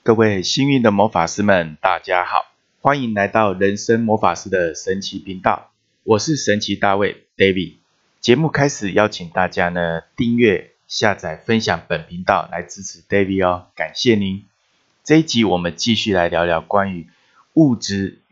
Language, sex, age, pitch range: Chinese, male, 20-39, 90-115 Hz